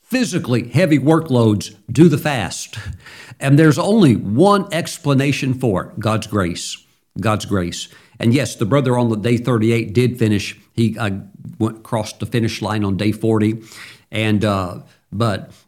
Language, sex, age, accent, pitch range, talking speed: English, male, 50-69, American, 115-145 Hz, 145 wpm